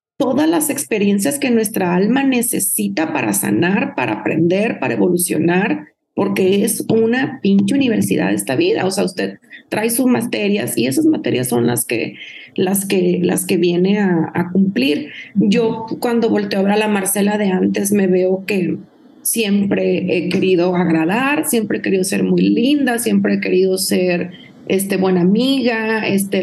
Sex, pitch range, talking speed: female, 190-230 Hz, 160 wpm